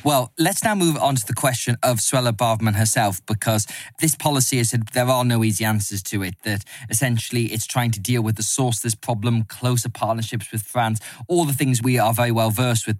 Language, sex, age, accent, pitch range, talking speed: English, male, 20-39, British, 110-130 Hz, 225 wpm